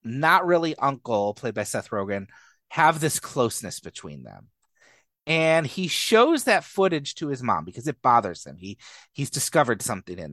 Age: 30-49